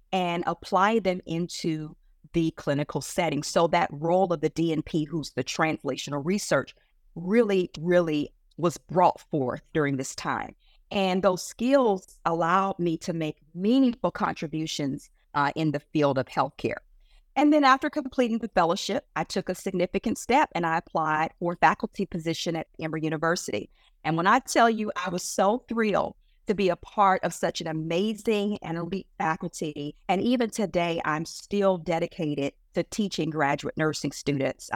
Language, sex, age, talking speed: English, female, 40-59, 160 wpm